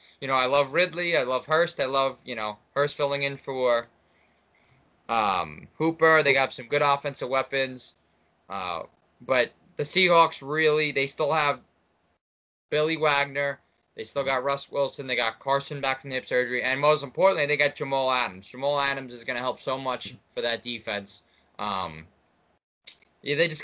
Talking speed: 175 wpm